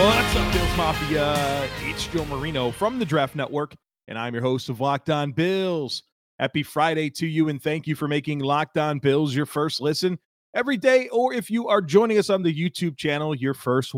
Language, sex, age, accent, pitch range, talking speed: English, male, 30-49, American, 135-175 Hz, 205 wpm